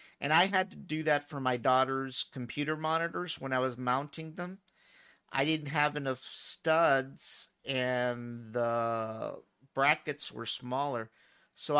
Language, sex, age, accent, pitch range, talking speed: English, male, 40-59, American, 130-155 Hz, 135 wpm